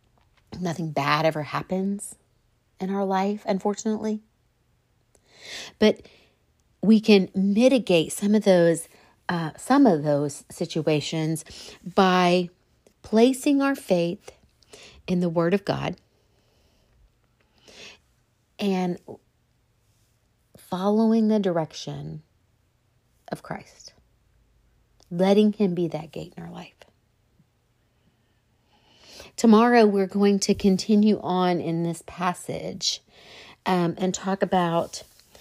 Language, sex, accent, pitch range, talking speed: English, female, American, 145-190 Hz, 95 wpm